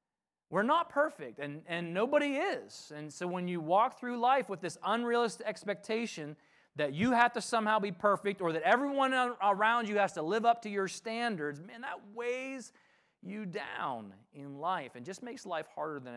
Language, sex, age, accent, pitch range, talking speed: English, male, 30-49, American, 150-205 Hz, 185 wpm